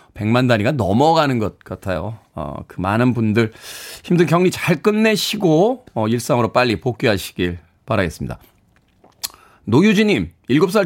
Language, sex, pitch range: Korean, male, 115-160 Hz